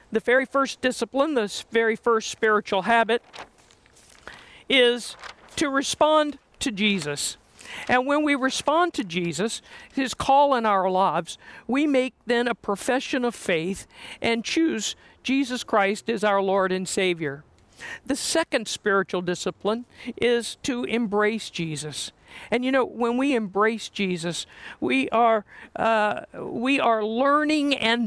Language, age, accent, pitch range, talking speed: English, 50-69, American, 205-255 Hz, 135 wpm